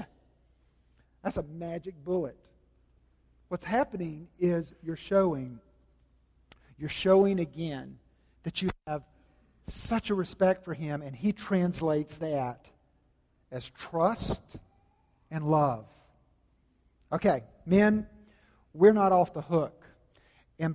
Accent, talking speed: American, 105 wpm